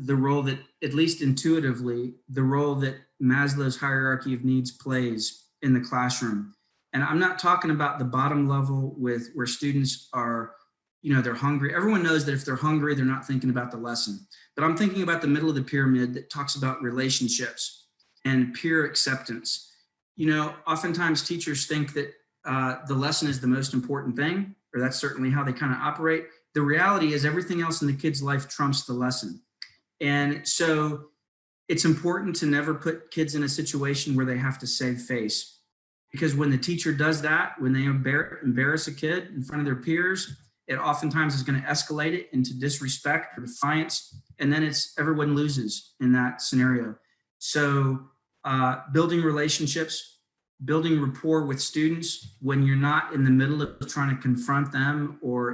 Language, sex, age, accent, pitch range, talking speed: English, male, 40-59, American, 130-155 Hz, 180 wpm